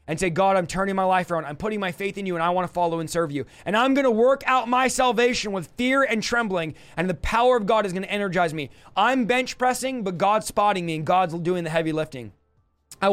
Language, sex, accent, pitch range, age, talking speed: English, male, American, 170-210 Hz, 20-39, 265 wpm